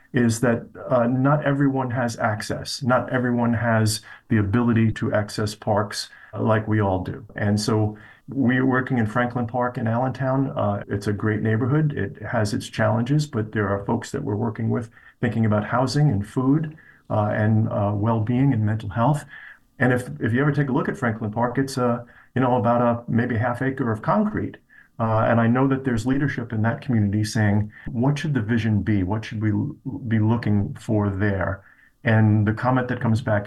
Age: 40-59